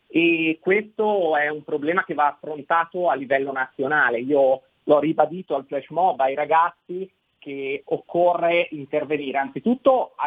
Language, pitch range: Italian, 135-160 Hz